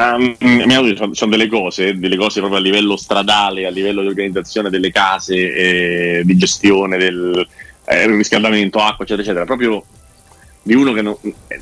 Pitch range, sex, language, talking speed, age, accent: 95-110 Hz, male, Italian, 155 wpm, 30-49, native